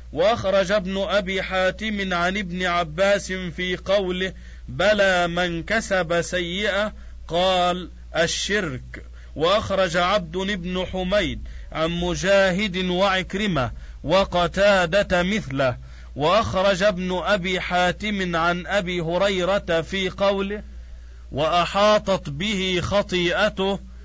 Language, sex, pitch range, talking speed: Arabic, male, 170-195 Hz, 90 wpm